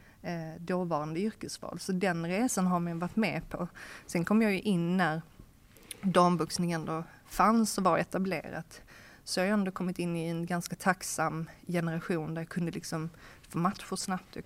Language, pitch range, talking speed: Swedish, 165-190 Hz, 175 wpm